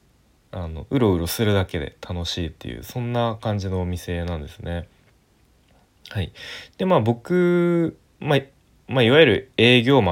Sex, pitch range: male, 90-125 Hz